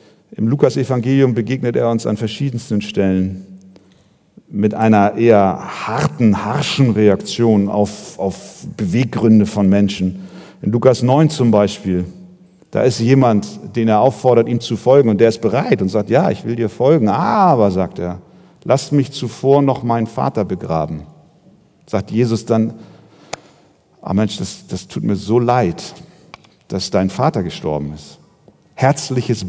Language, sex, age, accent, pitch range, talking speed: German, male, 50-69, German, 110-145 Hz, 145 wpm